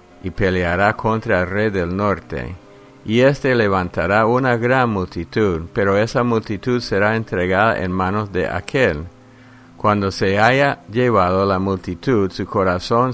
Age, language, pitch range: 50-69, English, 90-115 Hz